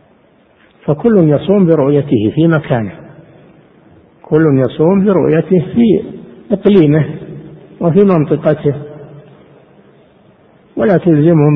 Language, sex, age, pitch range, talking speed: Arabic, male, 60-79, 135-165 Hz, 75 wpm